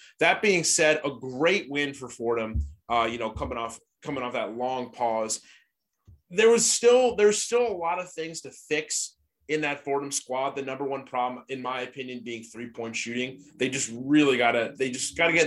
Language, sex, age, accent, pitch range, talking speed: English, male, 20-39, American, 115-155 Hz, 200 wpm